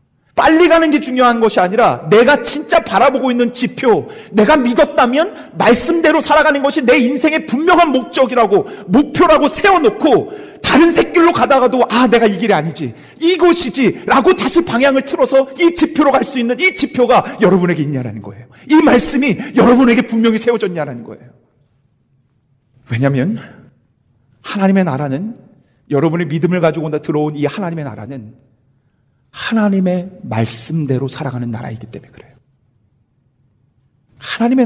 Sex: male